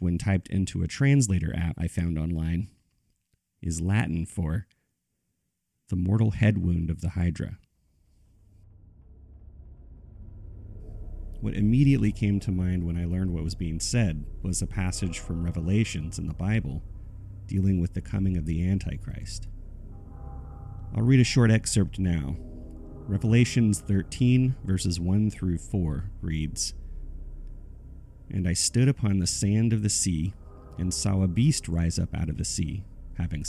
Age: 30-49